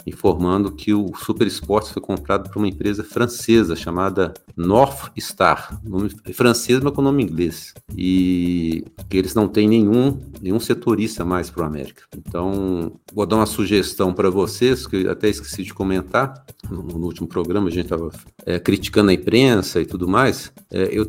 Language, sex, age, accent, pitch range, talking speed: Portuguese, male, 50-69, Brazilian, 90-115 Hz, 175 wpm